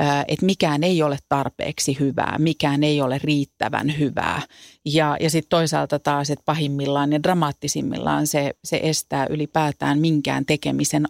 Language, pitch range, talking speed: Finnish, 145-195 Hz, 135 wpm